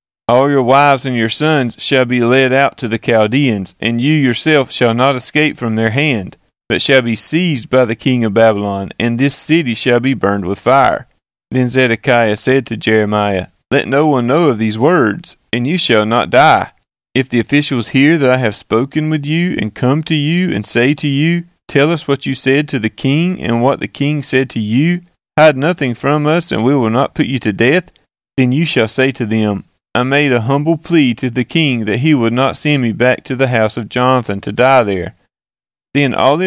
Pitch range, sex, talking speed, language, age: 115-145 Hz, male, 220 wpm, English, 30-49